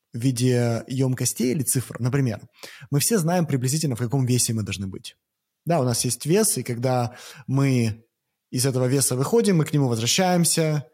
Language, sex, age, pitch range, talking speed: Russian, male, 20-39, 120-150 Hz, 175 wpm